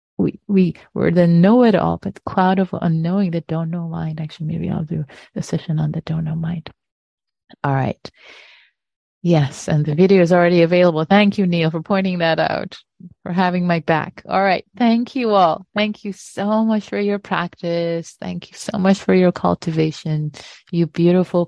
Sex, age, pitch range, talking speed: female, 30-49, 160-190 Hz, 185 wpm